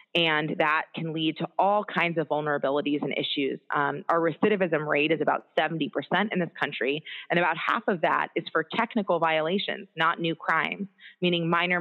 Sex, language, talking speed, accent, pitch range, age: female, English, 180 wpm, American, 150-175 Hz, 30-49